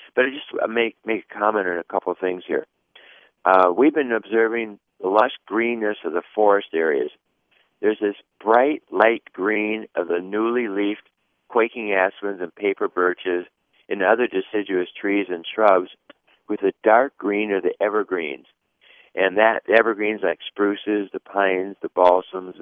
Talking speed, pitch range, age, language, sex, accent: 160 wpm, 95-120 Hz, 50-69, English, male, American